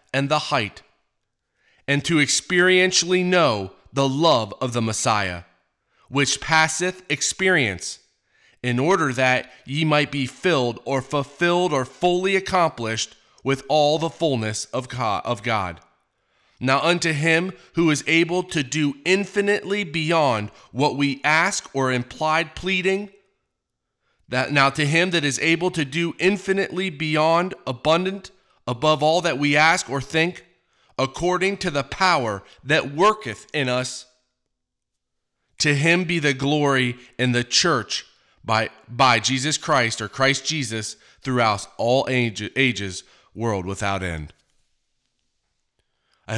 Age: 30-49